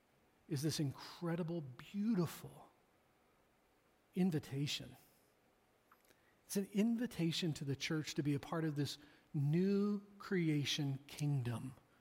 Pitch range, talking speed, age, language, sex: 145-185 Hz, 100 wpm, 40-59, English, male